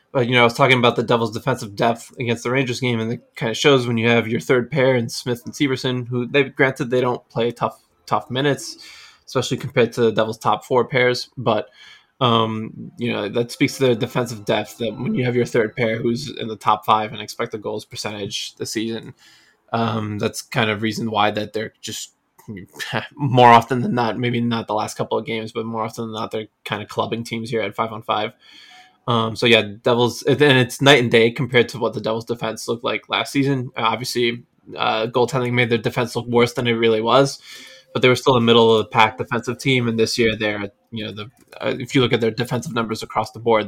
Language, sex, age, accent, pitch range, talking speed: English, male, 20-39, American, 110-125 Hz, 240 wpm